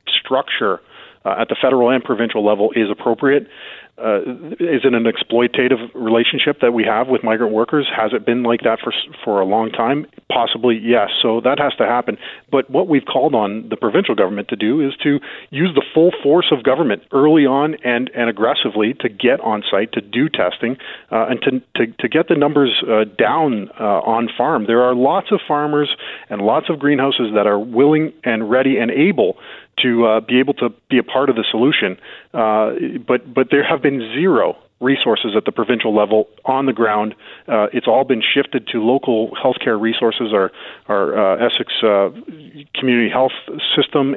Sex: male